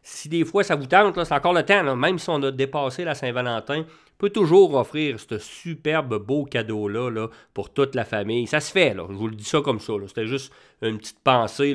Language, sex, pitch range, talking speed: English, male, 115-145 Hz, 245 wpm